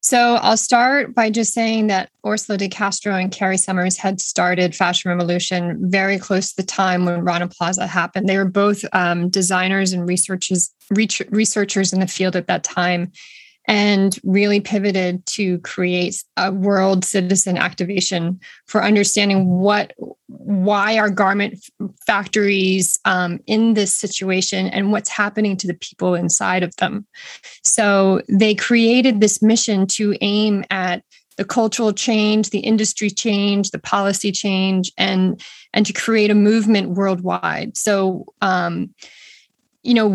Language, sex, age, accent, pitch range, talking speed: English, female, 20-39, American, 185-215 Hz, 145 wpm